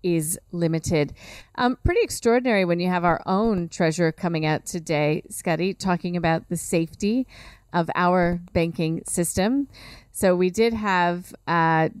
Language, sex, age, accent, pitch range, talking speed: English, female, 40-59, American, 160-195 Hz, 140 wpm